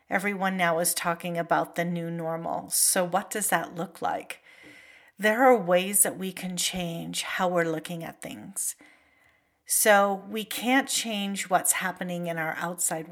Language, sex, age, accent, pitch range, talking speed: English, female, 50-69, American, 175-220 Hz, 160 wpm